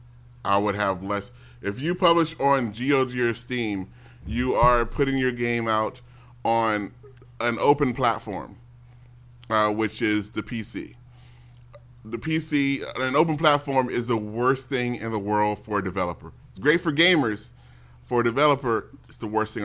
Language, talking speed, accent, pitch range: English, 160 wpm, American, 90-135 Hz